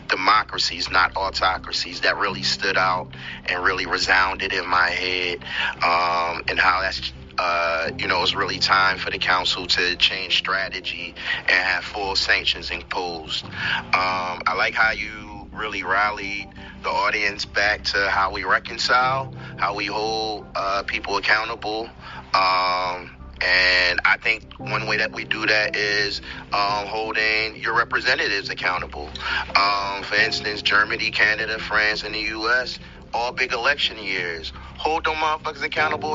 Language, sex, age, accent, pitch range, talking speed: English, male, 30-49, American, 90-110 Hz, 145 wpm